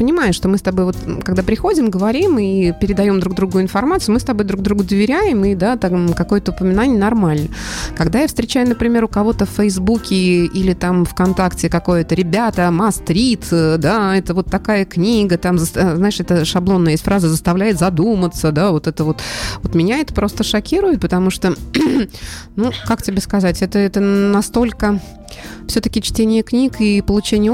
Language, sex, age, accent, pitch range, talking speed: Russian, female, 20-39, native, 170-215 Hz, 165 wpm